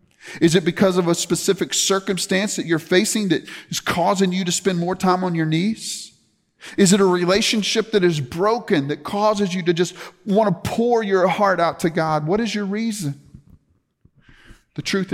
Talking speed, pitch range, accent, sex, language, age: 185 wpm, 135-200 Hz, American, male, English, 40-59